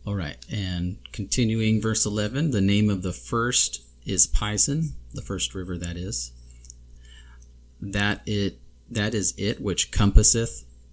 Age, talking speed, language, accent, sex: 30-49, 135 wpm, English, American, male